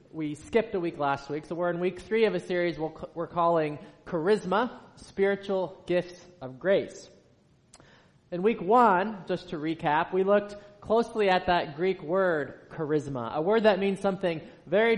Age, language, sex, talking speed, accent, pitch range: 20-39, English, male, 165 wpm, American, 155-195 Hz